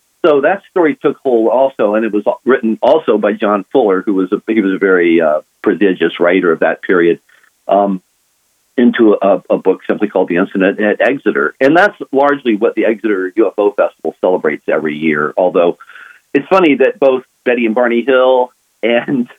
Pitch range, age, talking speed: 100-125 Hz, 50-69, 185 wpm